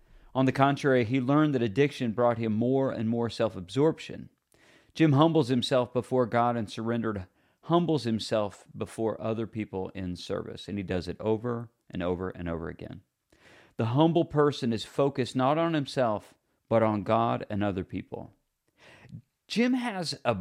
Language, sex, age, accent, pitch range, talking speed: English, male, 40-59, American, 105-135 Hz, 160 wpm